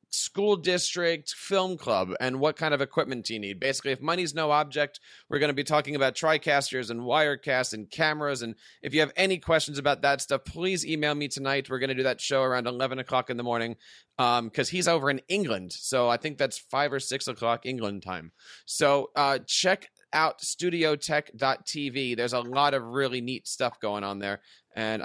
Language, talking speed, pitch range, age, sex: English, 205 wpm, 125-160 Hz, 30-49, male